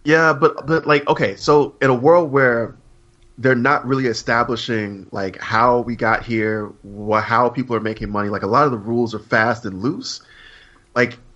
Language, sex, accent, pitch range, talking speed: English, male, American, 105-125 Hz, 190 wpm